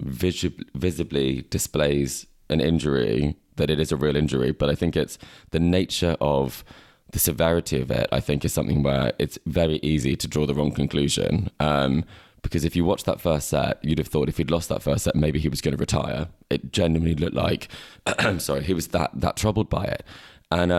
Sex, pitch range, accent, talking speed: male, 75-90 Hz, British, 205 wpm